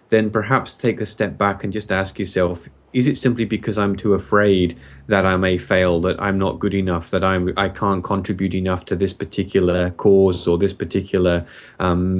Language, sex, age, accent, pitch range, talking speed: English, male, 20-39, British, 90-110 Hz, 195 wpm